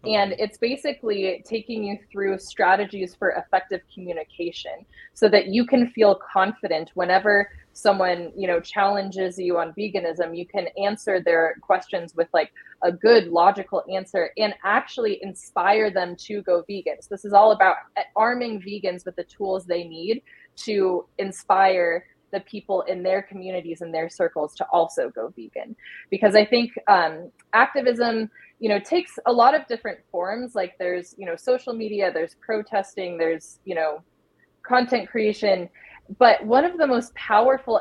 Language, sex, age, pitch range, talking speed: English, female, 20-39, 175-215 Hz, 160 wpm